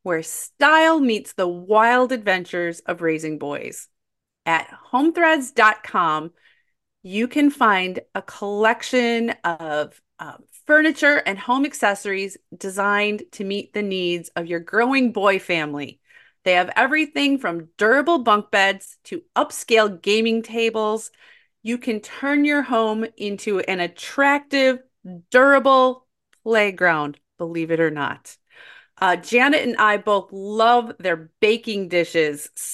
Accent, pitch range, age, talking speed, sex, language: American, 180-250 Hz, 30-49, 120 wpm, female, English